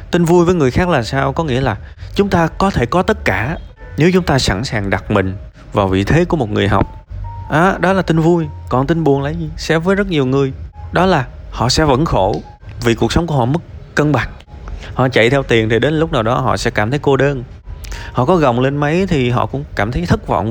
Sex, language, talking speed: male, Vietnamese, 255 wpm